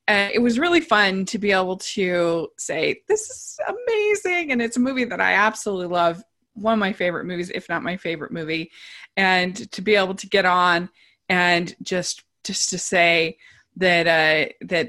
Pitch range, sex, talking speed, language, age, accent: 170-220 Hz, female, 185 wpm, English, 20-39, American